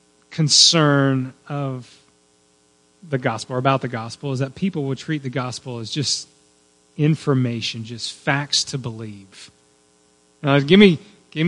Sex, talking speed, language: male, 135 wpm, English